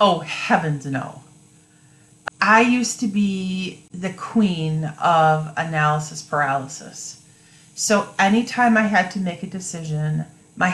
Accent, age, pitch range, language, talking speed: American, 40-59, 155-195 Hz, English, 115 wpm